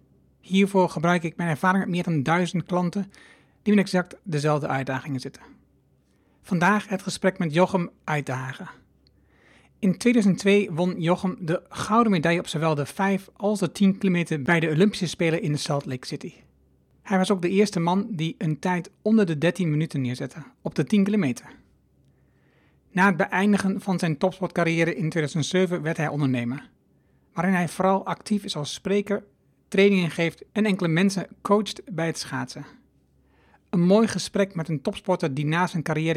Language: Dutch